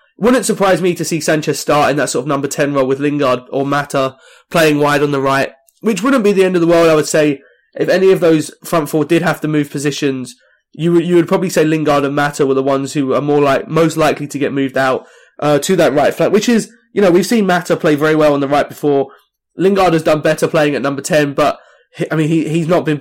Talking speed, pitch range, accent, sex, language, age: 270 wpm, 145-170 Hz, British, male, English, 20-39